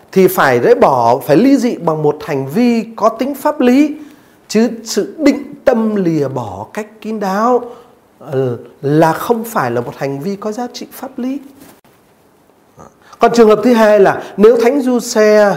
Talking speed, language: 175 wpm, Vietnamese